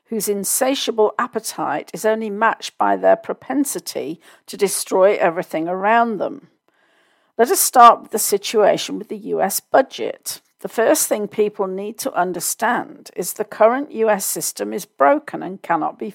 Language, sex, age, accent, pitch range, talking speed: English, female, 50-69, British, 195-245 Hz, 150 wpm